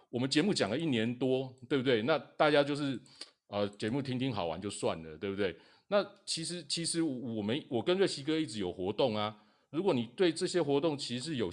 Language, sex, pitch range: Chinese, male, 105-145 Hz